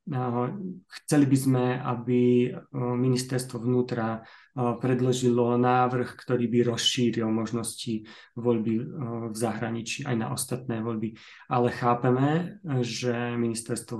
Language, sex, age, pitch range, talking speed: Slovak, male, 30-49, 120-130 Hz, 100 wpm